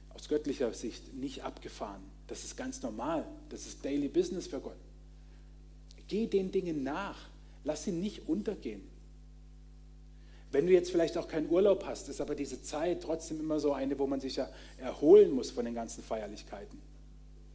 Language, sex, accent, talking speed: German, male, German, 170 wpm